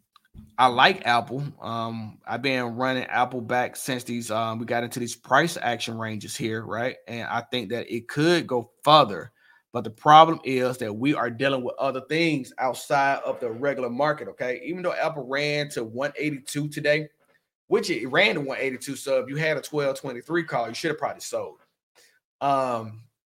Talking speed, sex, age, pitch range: 180 wpm, male, 20-39, 120-150 Hz